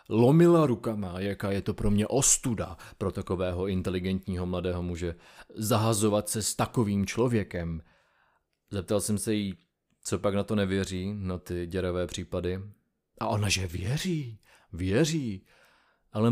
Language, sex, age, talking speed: Czech, male, 30-49, 135 wpm